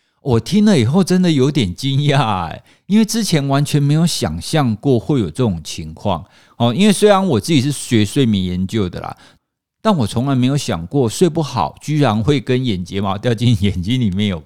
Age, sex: 50-69, male